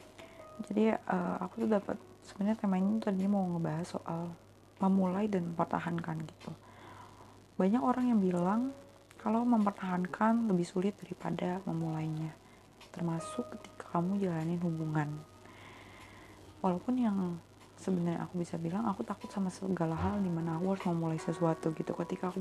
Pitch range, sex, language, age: 160-195 Hz, female, Indonesian, 20-39